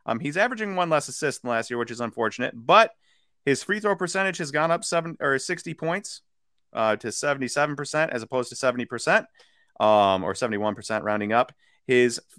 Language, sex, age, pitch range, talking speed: English, male, 30-49, 105-150 Hz, 180 wpm